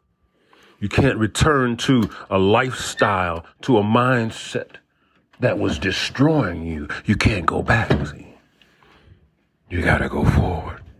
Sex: male